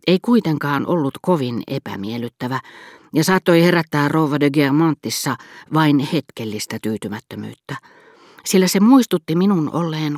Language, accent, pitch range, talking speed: Finnish, native, 125-170 Hz, 110 wpm